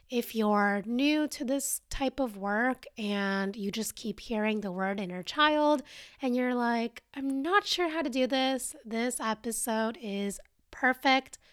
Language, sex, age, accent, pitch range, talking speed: English, female, 20-39, American, 215-270 Hz, 160 wpm